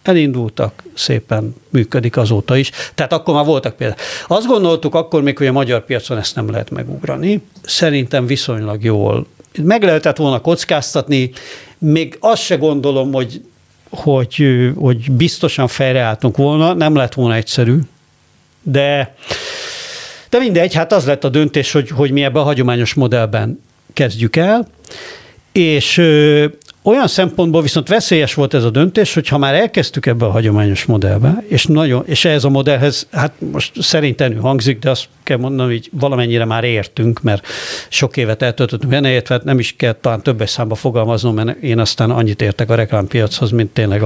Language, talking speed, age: Hungarian, 160 wpm, 50-69